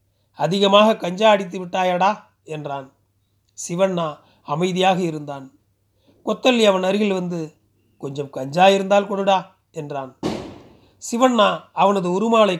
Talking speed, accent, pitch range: 90 wpm, native, 145-200 Hz